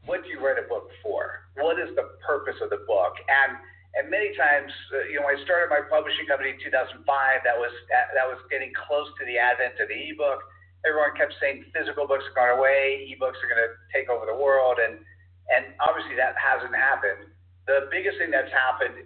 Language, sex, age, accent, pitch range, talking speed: English, male, 50-69, American, 105-150 Hz, 215 wpm